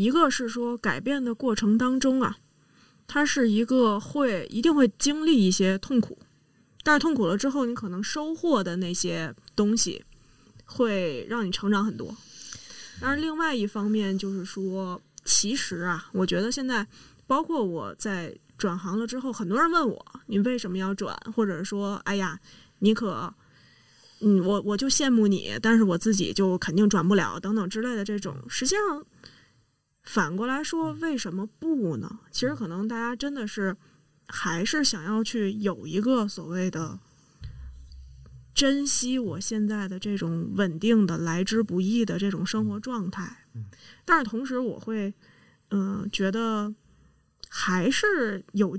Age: 20-39